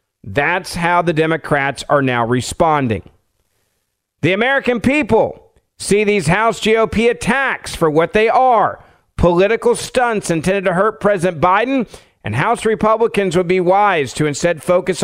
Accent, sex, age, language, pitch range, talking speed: American, male, 50-69, English, 155-220 Hz, 140 wpm